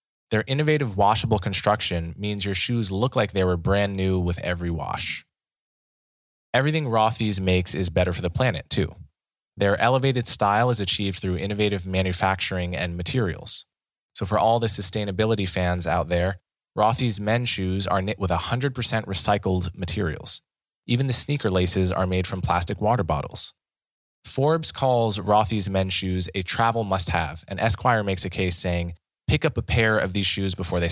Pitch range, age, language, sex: 90-115 Hz, 20-39, English, male